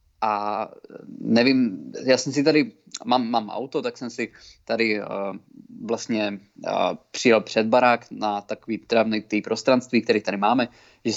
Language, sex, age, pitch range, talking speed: Czech, male, 20-39, 110-140 Hz, 140 wpm